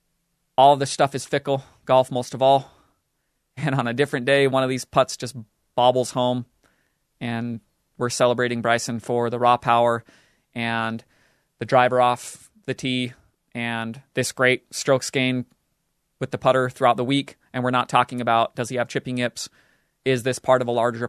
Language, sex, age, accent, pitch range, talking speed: English, male, 30-49, American, 120-145 Hz, 180 wpm